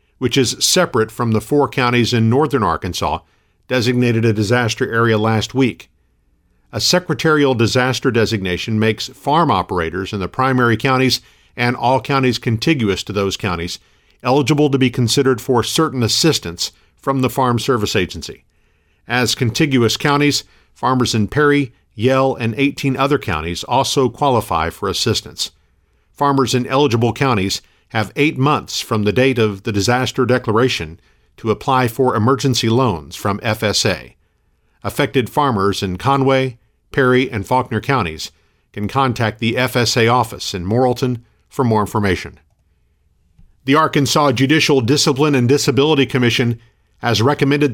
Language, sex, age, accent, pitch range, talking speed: English, male, 50-69, American, 105-135 Hz, 135 wpm